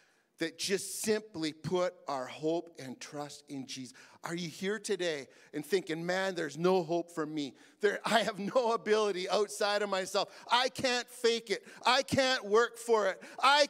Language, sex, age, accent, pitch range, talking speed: English, male, 50-69, American, 165-235 Hz, 175 wpm